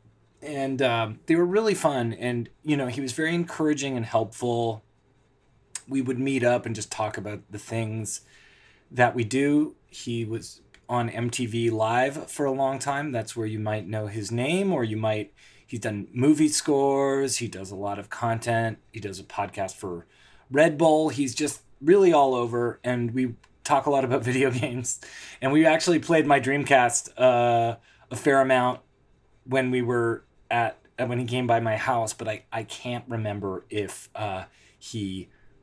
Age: 30-49